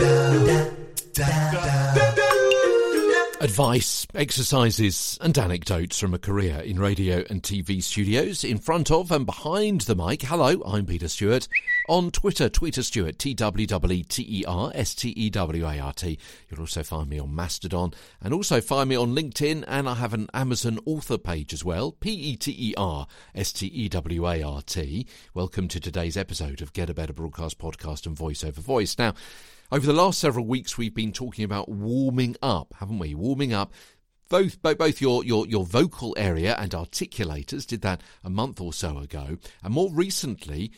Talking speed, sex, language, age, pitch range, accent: 180 wpm, male, English, 50-69, 85-135 Hz, British